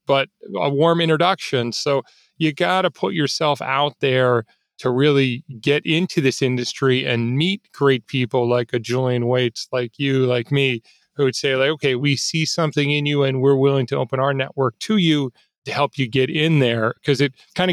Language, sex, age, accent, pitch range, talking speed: English, male, 30-49, American, 125-150 Hz, 195 wpm